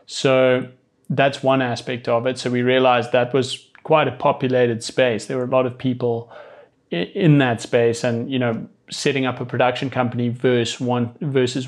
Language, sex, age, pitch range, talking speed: English, male, 30-49, 120-135 Hz, 170 wpm